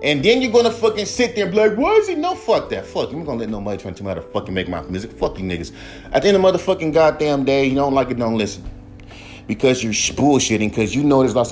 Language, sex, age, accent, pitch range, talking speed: English, male, 30-49, American, 105-145 Hz, 300 wpm